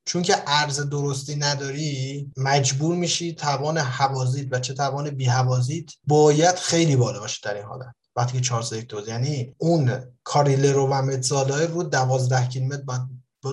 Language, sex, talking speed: Persian, male, 145 wpm